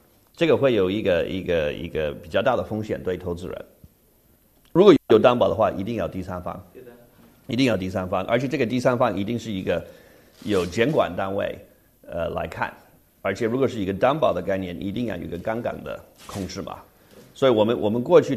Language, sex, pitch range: Chinese, male, 95-125 Hz